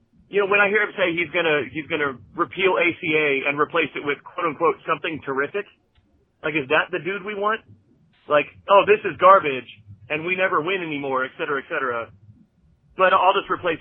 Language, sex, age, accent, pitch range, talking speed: English, male, 40-59, American, 125-165 Hz, 205 wpm